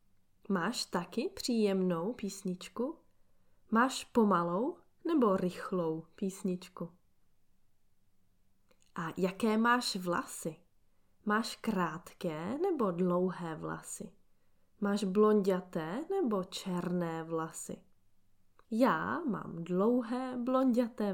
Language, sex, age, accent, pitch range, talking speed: Czech, female, 20-39, native, 170-225 Hz, 75 wpm